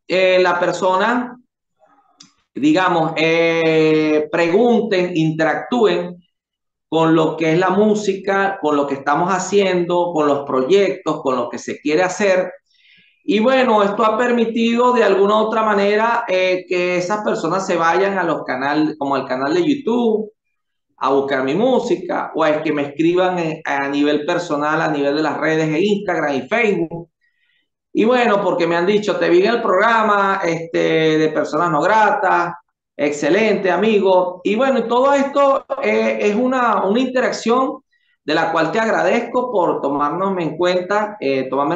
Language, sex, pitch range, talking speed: Spanish, male, 155-215 Hz, 155 wpm